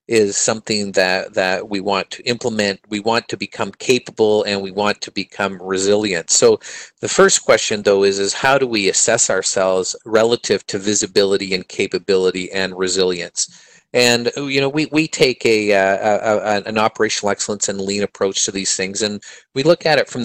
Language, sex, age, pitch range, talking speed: English, male, 40-59, 100-115 Hz, 185 wpm